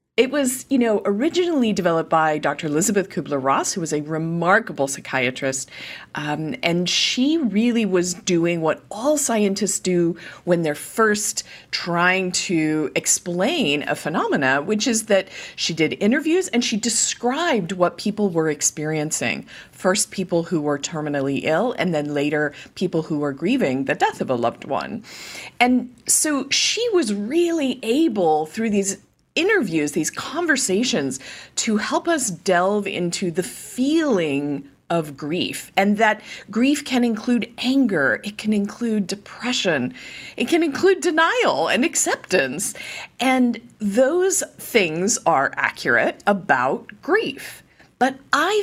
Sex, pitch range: female, 160-245 Hz